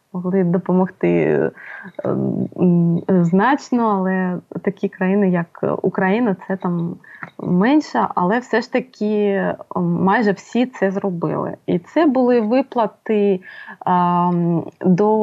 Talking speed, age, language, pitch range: 100 wpm, 20-39, Ukrainian, 185-245 Hz